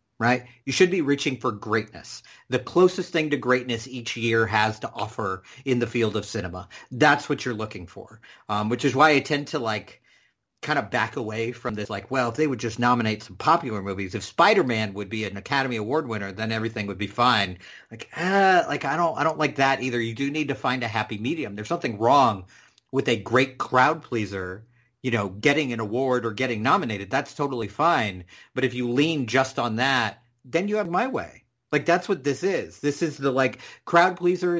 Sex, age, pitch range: male, 50-69, 110-145 Hz